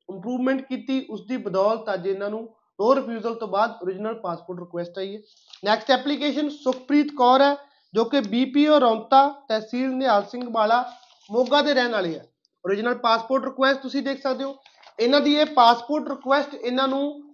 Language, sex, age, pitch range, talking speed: Punjabi, male, 30-49, 220-275 Hz, 170 wpm